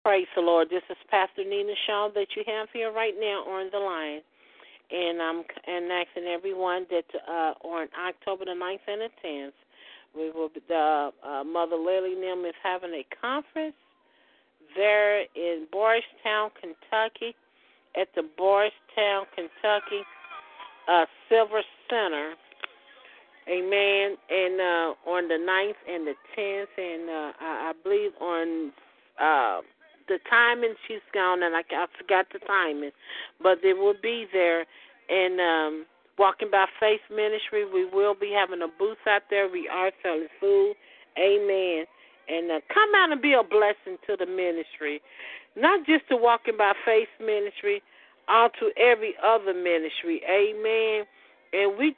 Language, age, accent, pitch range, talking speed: English, 50-69, American, 175-230 Hz, 150 wpm